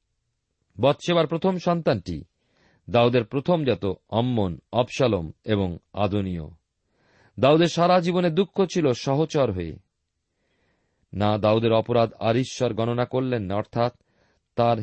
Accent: native